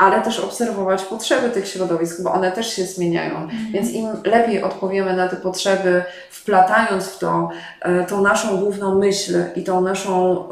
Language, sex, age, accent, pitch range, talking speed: Polish, female, 20-39, native, 180-200 Hz, 160 wpm